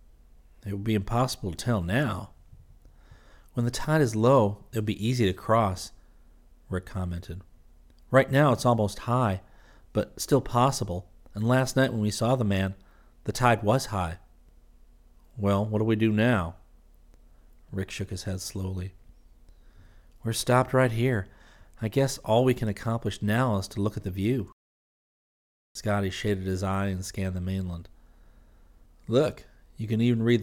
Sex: male